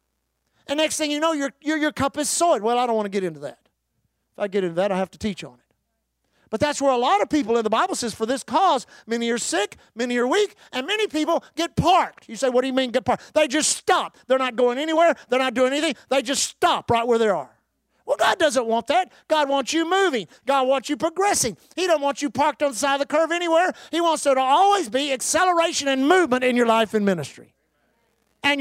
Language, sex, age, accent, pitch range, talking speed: English, male, 50-69, American, 225-295 Hz, 255 wpm